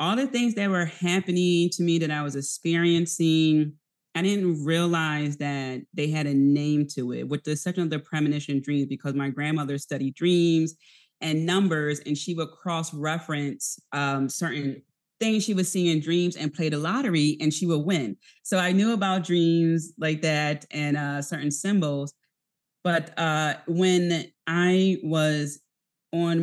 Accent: American